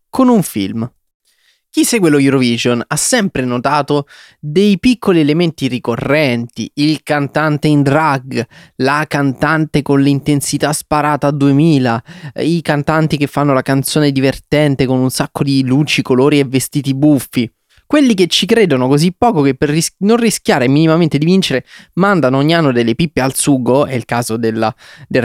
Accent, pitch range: native, 120-155 Hz